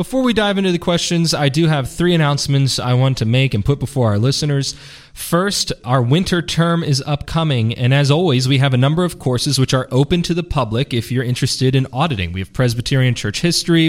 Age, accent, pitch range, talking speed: 20-39, American, 110-150 Hz, 220 wpm